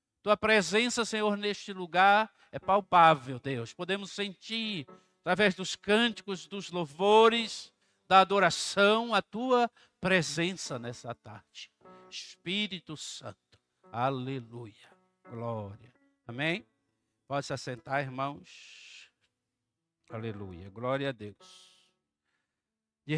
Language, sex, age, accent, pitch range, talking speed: Portuguese, male, 60-79, Brazilian, 140-205 Hz, 95 wpm